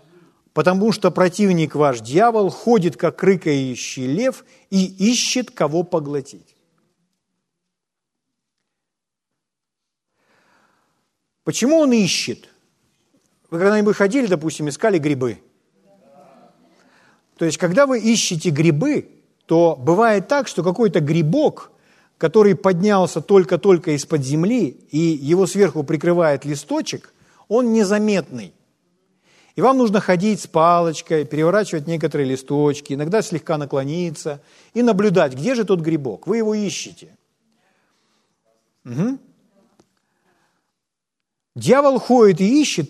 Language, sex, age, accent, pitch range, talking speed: Ukrainian, male, 50-69, native, 160-210 Hz, 100 wpm